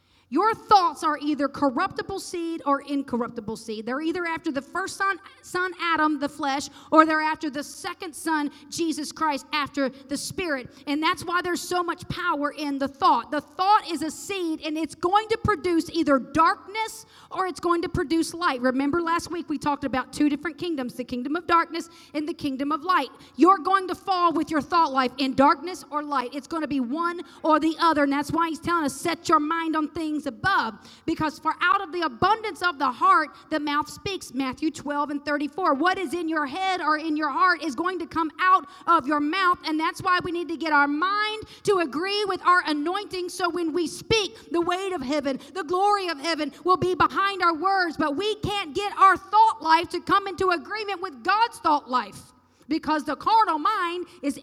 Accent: American